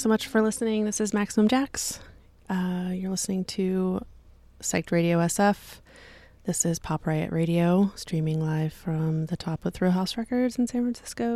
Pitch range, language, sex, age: 160-195 Hz, Italian, female, 30-49